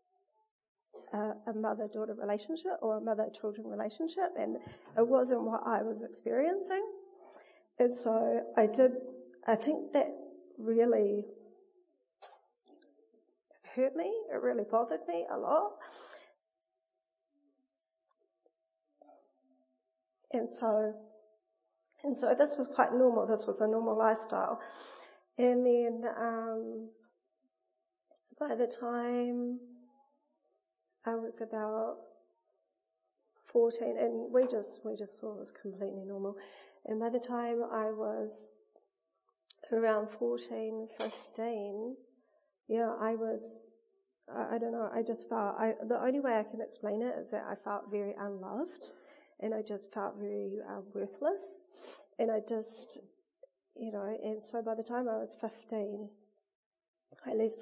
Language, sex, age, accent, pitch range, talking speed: English, female, 40-59, Australian, 215-260 Hz, 125 wpm